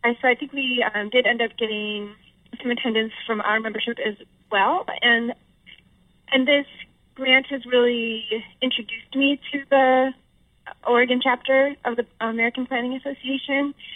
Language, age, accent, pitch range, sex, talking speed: English, 30-49, American, 210-250 Hz, female, 140 wpm